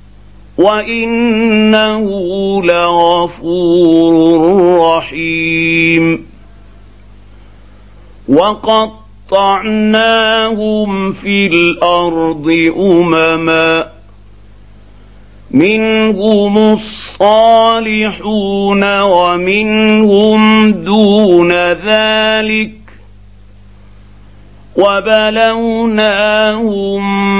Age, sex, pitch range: 50-69, male, 150-210 Hz